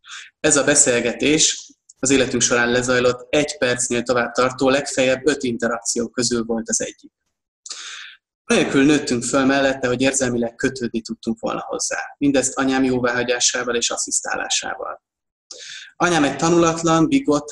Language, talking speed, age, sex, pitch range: Hungarian, 125 wpm, 20-39, male, 120-145 Hz